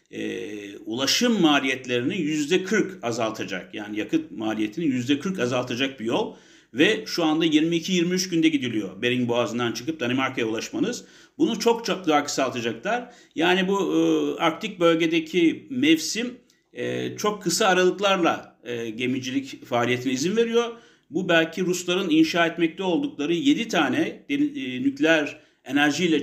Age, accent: 60-79, Turkish